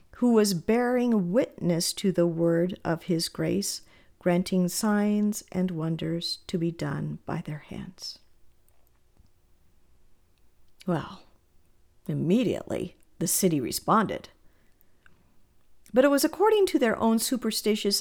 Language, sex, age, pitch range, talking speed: English, female, 50-69, 170-225 Hz, 110 wpm